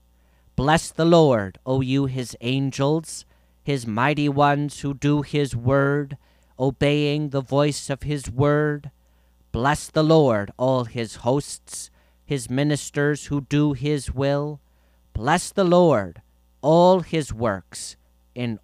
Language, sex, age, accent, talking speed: English, male, 40-59, American, 125 wpm